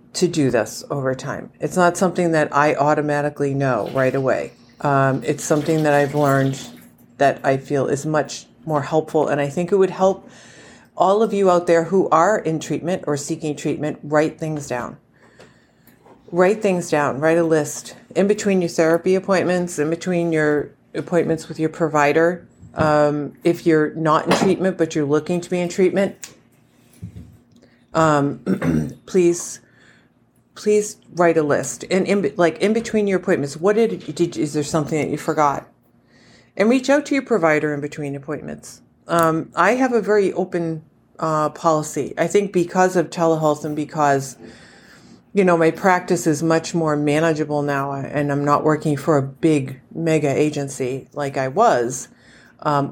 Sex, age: female, 40-59